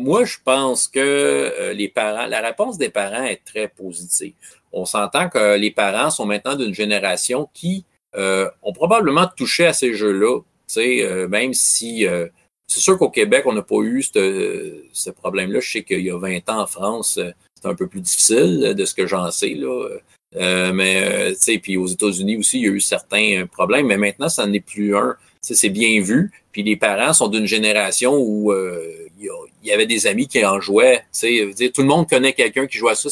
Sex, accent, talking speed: male, Canadian, 215 wpm